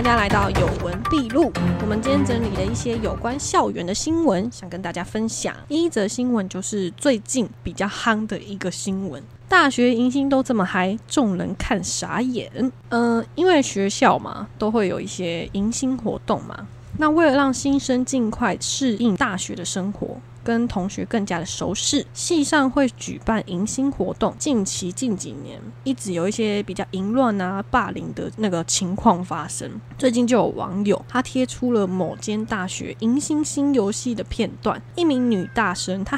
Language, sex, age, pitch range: Chinese, female, 20-39, 185-250 Hz